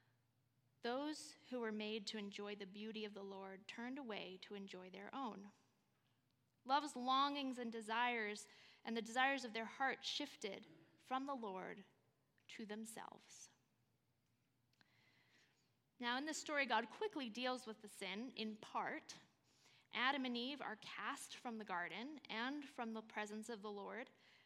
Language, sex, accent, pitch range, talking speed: English, female, American, 200-260 Hz, 145 wpm